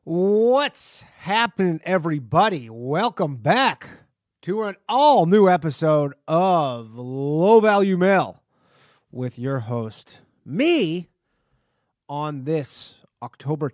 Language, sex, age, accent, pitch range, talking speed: English, male, 30-49, American, 140-210 Hz, 85 wpm